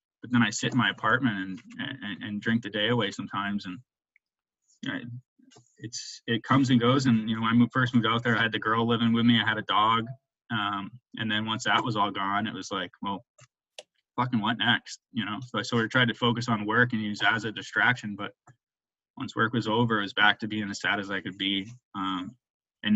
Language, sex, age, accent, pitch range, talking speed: English, male, 20-39, American, 110-125 Hz, 235 wpm